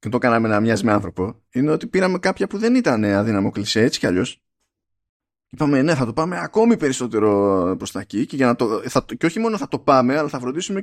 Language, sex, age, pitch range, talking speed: Greek, male, 20-39, 105-155 Hz, 215 wpm